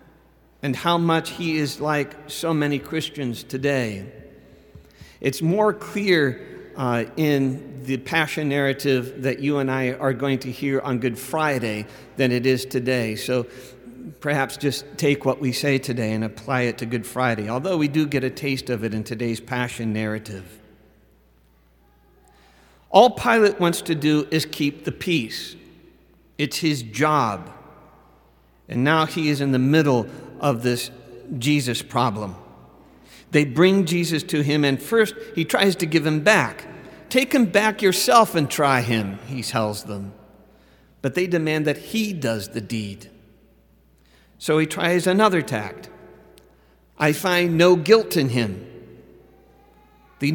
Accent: American